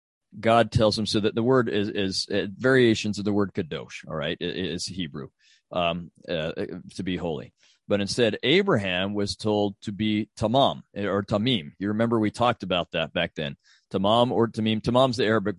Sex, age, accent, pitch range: male, 40-59, American, 100-125 Hz